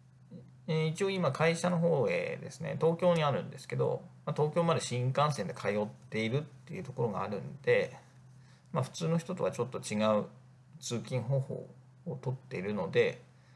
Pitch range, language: 125-140 Hz, Japanese